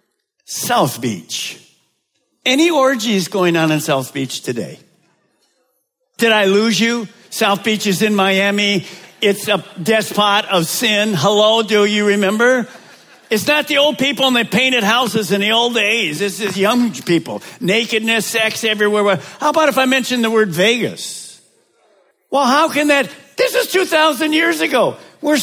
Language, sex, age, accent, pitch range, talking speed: English, male, 50-69, American, 200-260 Hz, 155 wpm